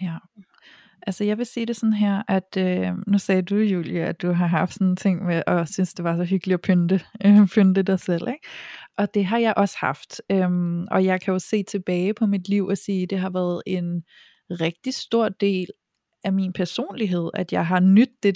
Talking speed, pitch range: 220 wpm, 185-215 Hz